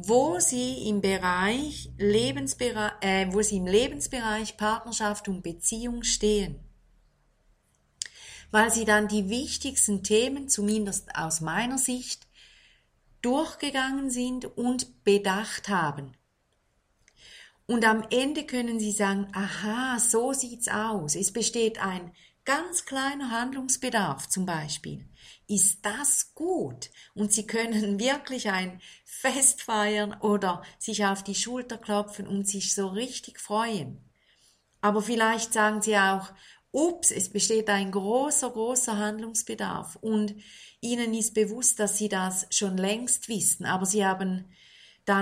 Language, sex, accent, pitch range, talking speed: German, female, German, 195-245 Hz, 125 wpm